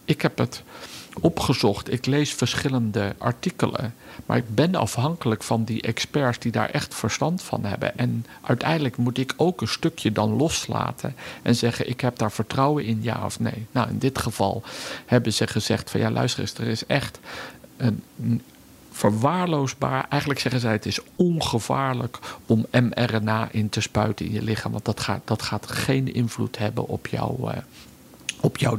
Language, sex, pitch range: Dutch, male, 110-130 Hz